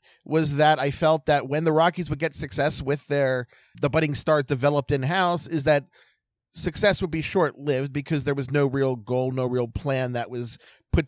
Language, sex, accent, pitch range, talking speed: English, male, American, 140-190 Hz, 195 wpm